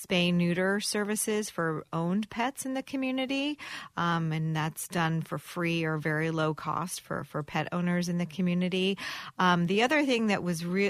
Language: English